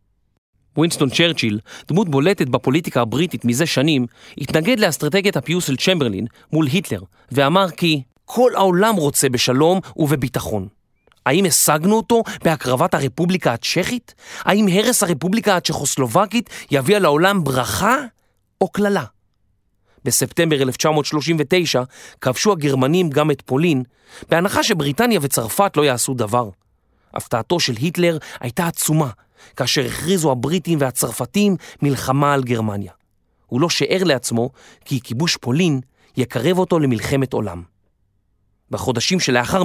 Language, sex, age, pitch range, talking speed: Hebrew, male, 30-49, 125-180 Hz, 115 wpm